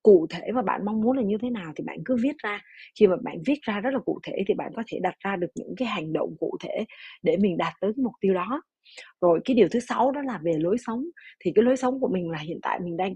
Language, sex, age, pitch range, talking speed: Vietnamese, female, 20-39, 180-245 Hz, 300 wpm